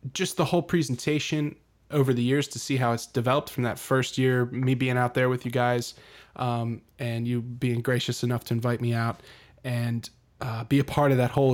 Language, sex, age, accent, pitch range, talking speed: English, male, 20-39, American, 120-140 Hz, 215 wpm